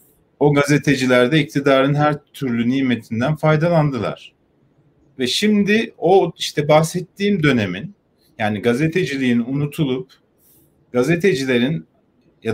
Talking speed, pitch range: 85 wpm, 125-155 Hz